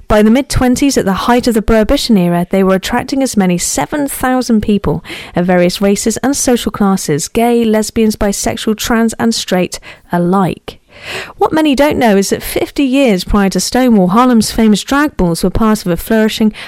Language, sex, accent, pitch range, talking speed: English, female, British, 190-235 Hz, 180 wpm